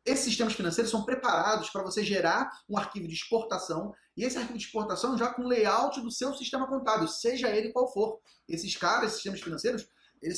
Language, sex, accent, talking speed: Portuguese, male, Brazilian, 195 wpm